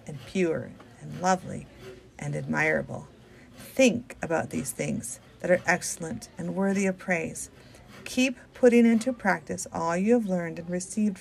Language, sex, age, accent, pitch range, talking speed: English, female, 40-59, American, 180-235 Hz, 145 wpm